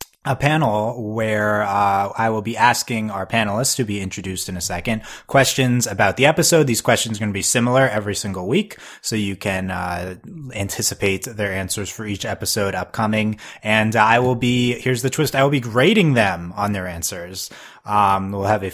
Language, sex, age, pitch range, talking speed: English, male, 20-39, 100-130 Hz, 195 wpm